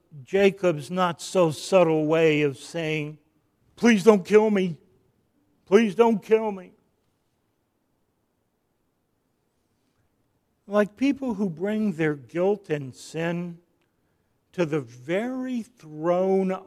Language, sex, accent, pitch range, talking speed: English, male, American, 155-235 Hz, 90 wpm